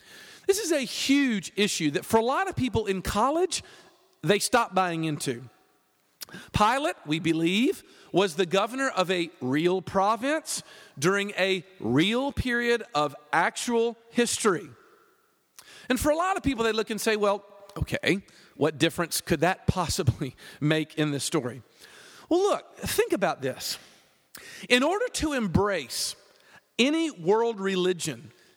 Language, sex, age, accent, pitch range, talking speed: English, male, 40-59, American, 180-265 Hz, 140 wpm